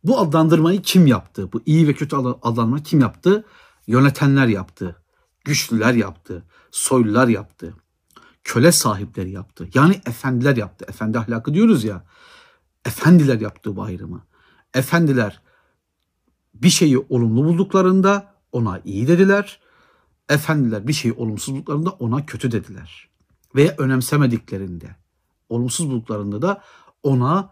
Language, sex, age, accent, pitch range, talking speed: Turkish, male, 60-79, native, 105-145 Hz, 110 wpm